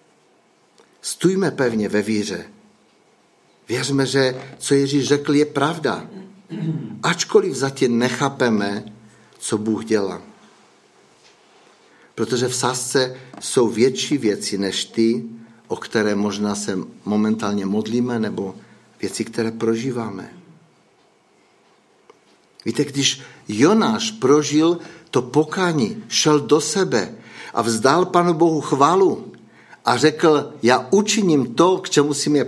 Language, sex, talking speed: Czech, male, 105 wpm